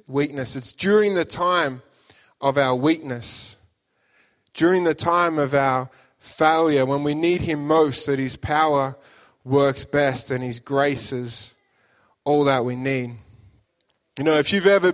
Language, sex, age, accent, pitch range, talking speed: English, male, 20-39, Australian, 135-165 Hz, 150 wpm